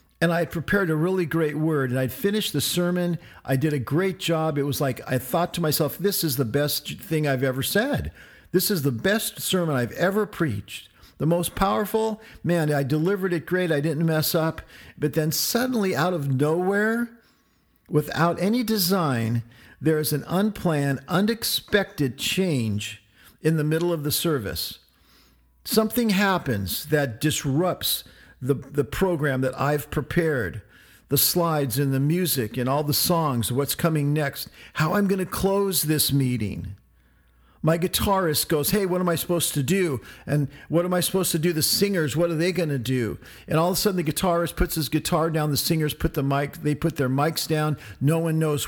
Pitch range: 135-180 Hz